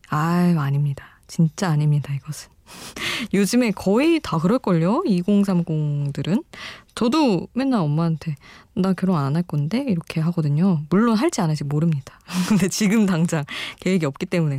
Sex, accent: female, native